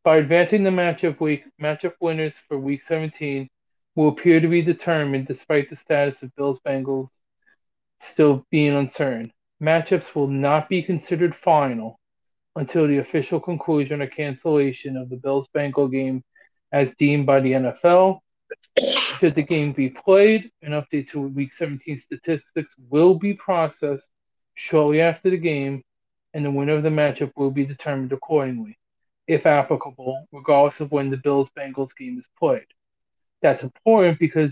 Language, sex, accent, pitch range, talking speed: English, male, American, 135-165 Hz, 150 wpm